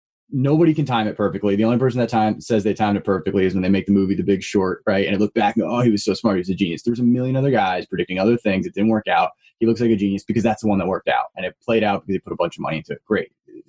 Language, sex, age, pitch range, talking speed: English, male, 20-39, 100-115 Hz, 335 wpm